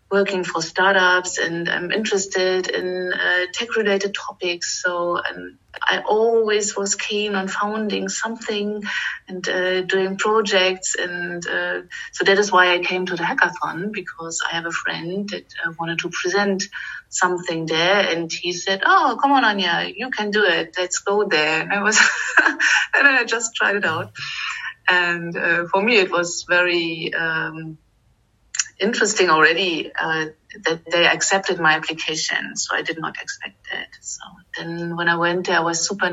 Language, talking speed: English, 170 wpm